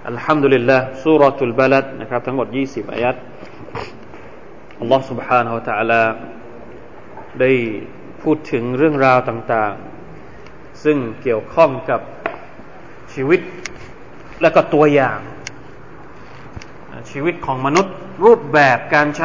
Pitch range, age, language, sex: 120-155 Hz, 20-39, Thai, male